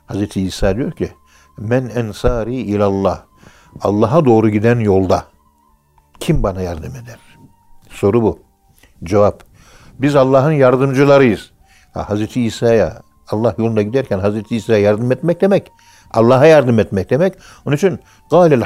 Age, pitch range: 60-79, 95-130 Hz